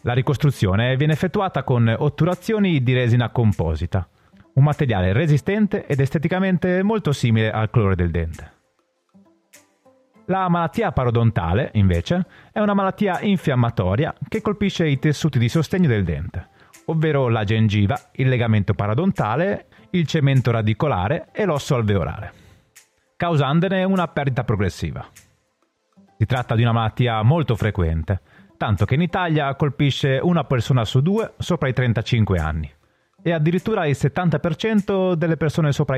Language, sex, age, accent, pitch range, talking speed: Italian, male, 30-49, native, 110-165 Hz, 130 wpm